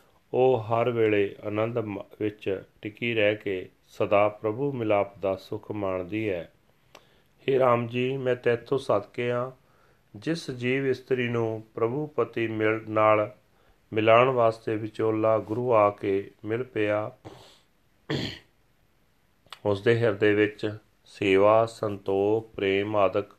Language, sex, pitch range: Punjabi, male, 100-120 Hz